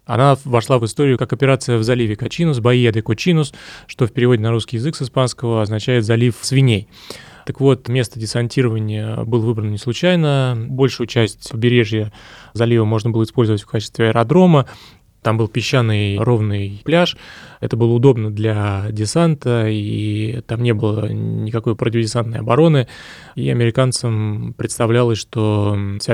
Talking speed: 140 wpm